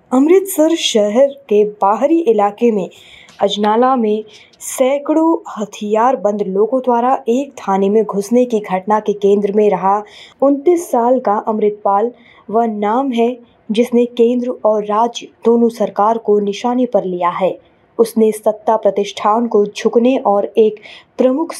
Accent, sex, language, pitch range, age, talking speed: native, female, Hindi, 205-240 Hz, 20-39, 135 wpm